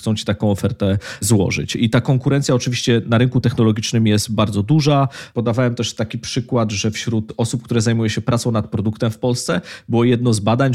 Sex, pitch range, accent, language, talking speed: male, 105-125 Hz, native, Polish, 190 wpm